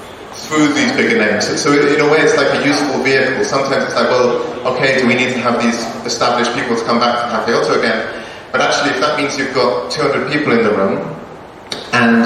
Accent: British